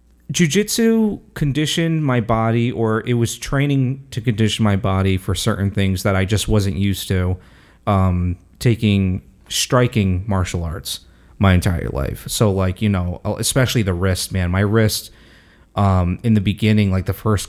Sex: male